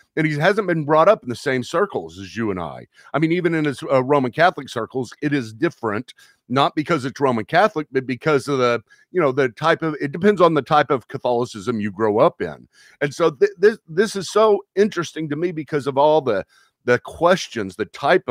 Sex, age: male, 50-69